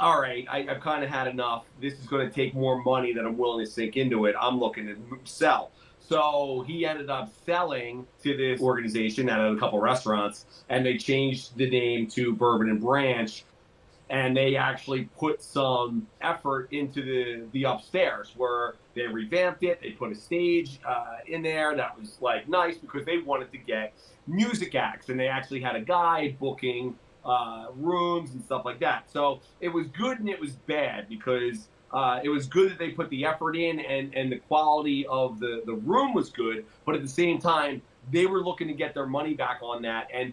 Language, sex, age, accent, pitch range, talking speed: English, male, 30-49, American, 120-150 Hz, 205 wpm